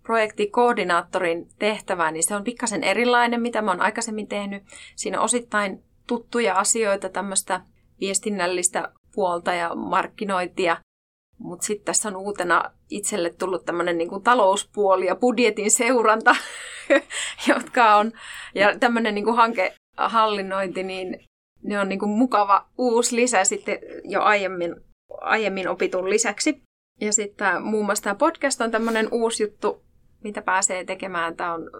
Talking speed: 130 wpm